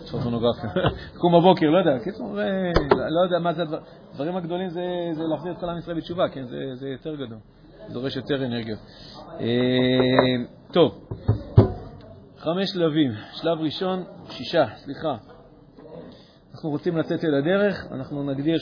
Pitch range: 130-165 Hz